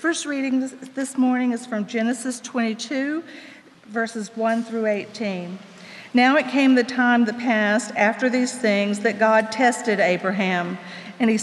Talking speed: 150 wpm